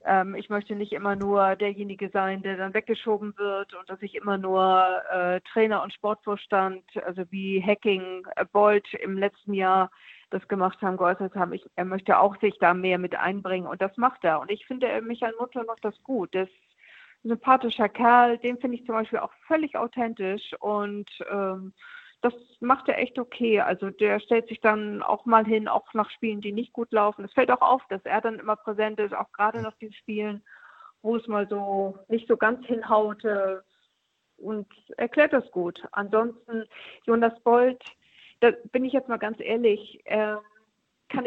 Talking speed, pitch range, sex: 185 wpm, 195-230 Hz, female